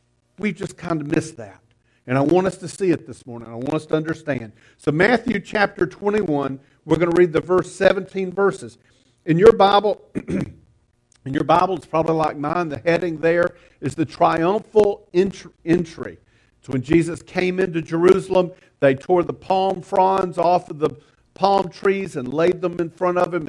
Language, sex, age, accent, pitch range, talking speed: English, male, 50-69, American, 135-185 Hz, 185 wpm